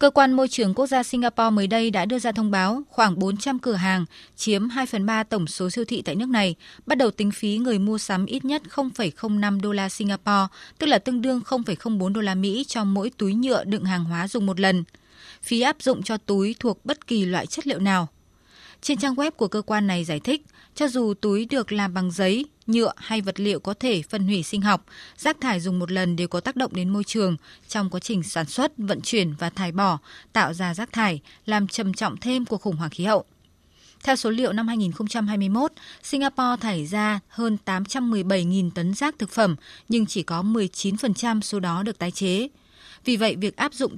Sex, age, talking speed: female, 20-39, 220 wpm